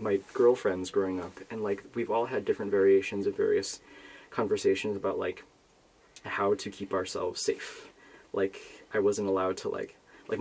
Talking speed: 160 wpm